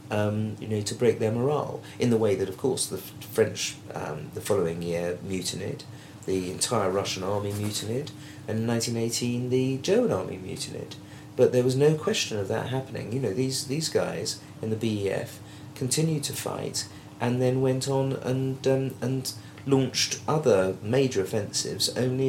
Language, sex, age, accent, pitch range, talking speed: English, male, 40-59, British, 95-130 Hz, 170 wpm